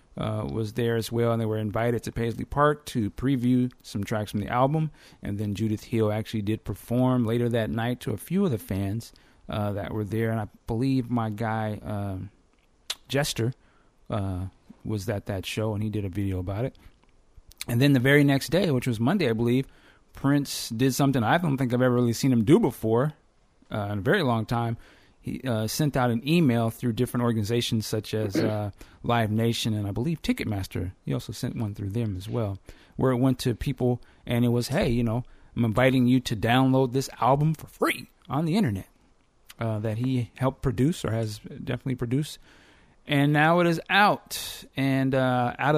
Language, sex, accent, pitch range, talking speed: English, male, American, 110-135 Hz, 200 wpm